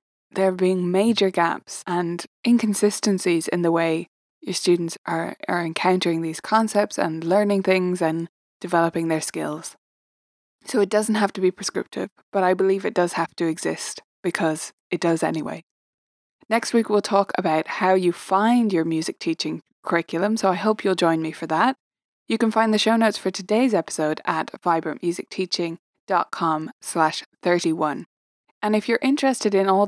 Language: English